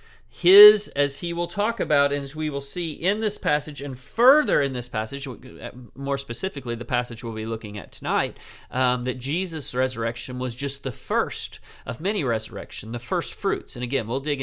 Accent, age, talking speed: American, 40-59, 190 wpm